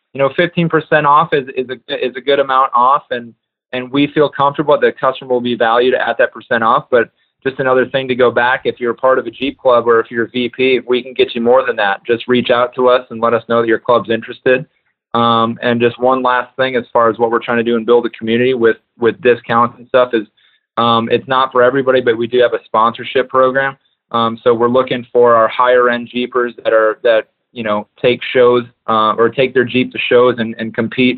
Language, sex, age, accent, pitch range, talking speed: English, male, 20-39, American, 115-130 Hz, 250 wpm